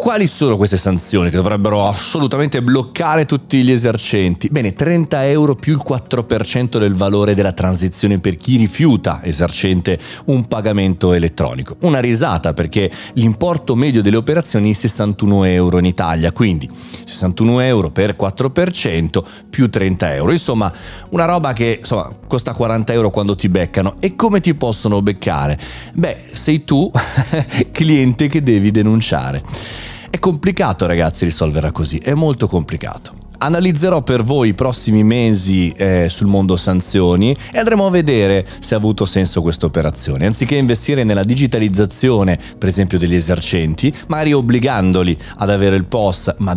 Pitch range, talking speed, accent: 90-130 Hz, 145 wpm, native